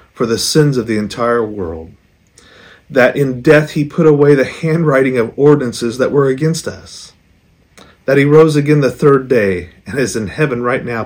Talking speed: 185 wpm